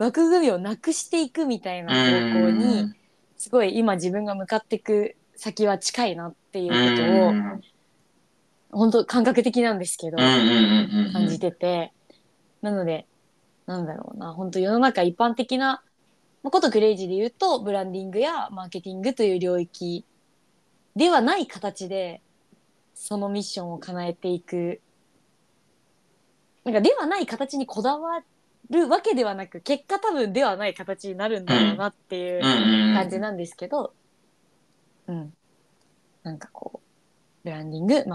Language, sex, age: Japanese, female, 20-39